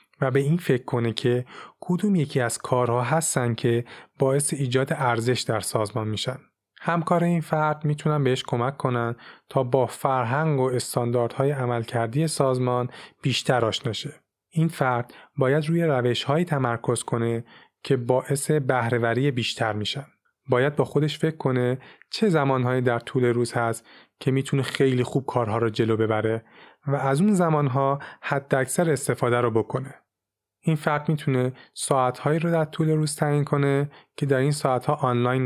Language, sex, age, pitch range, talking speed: Persian, male, 30-49, 120-150 Hz, 150 wpm